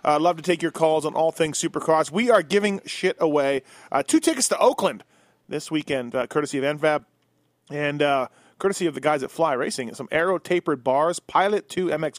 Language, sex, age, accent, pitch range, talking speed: English, male, 30-49, American, 145-185 Hz, 200 wpm